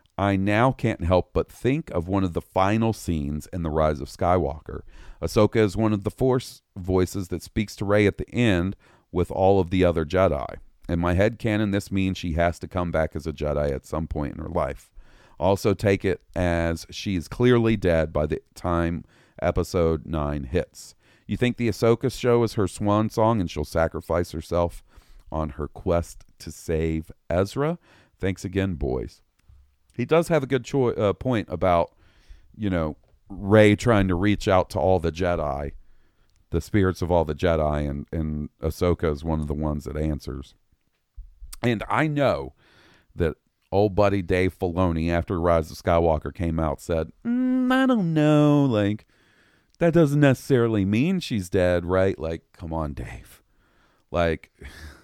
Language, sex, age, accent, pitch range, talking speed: English, male, 40-59, American, 80-110 Hz, 175 wpm